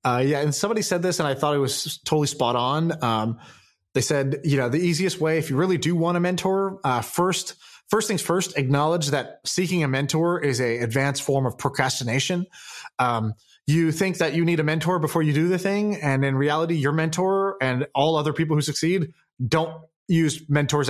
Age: 20-39